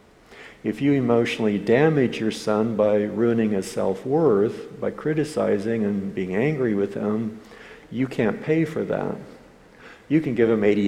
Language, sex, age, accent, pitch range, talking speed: English, male, 60-79, American, 115-150 Hz, 150 wpm